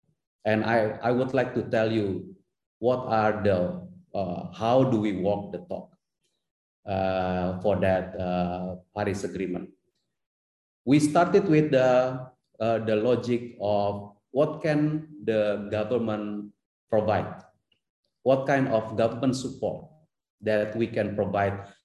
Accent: native